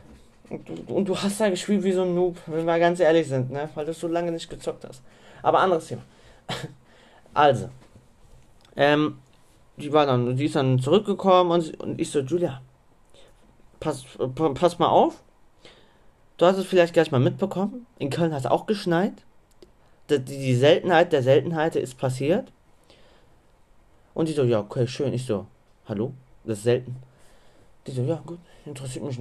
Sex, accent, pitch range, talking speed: male, German, 125-165 Hz, 175 wpm